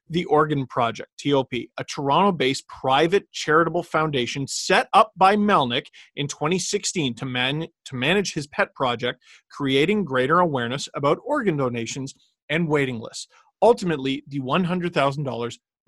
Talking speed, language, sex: 125 wpm, English, male